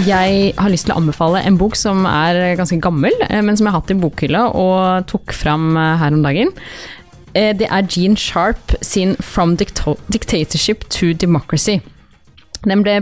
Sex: female